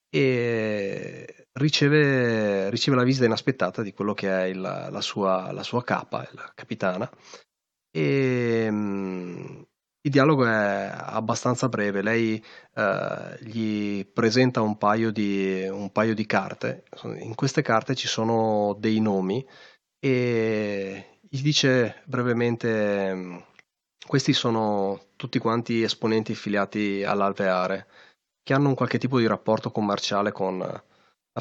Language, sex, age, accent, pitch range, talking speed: Italian, male, 30-49, native, 100-120 Hz, 120 wpm